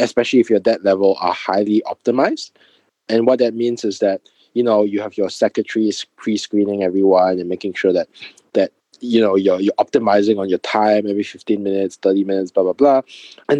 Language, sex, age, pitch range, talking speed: English, male, 20-39, 100-140 Hz, 195 wpm